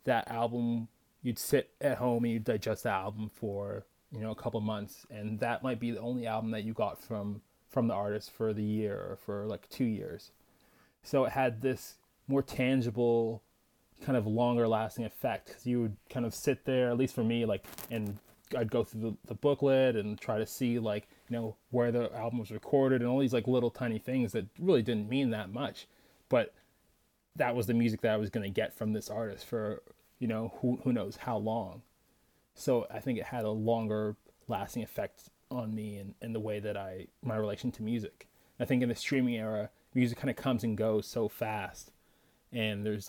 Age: 20-39